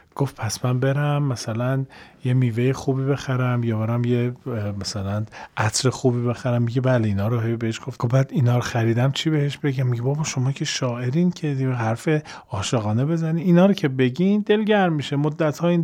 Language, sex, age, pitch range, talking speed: Persian, male, 40-59, 110-155 Hz, 180 wpm